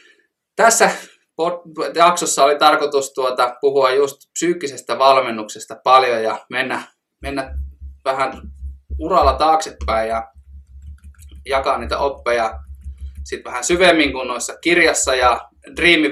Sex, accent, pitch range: male, native, 115-175 Hz